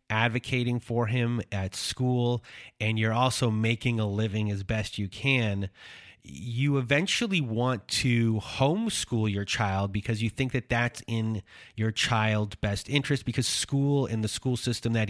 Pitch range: 100-120 Hz